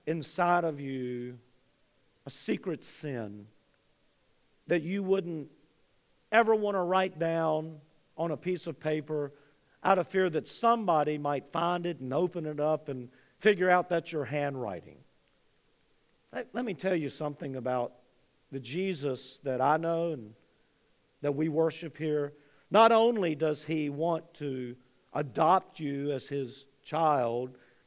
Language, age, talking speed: English, 50-69, 140 wpm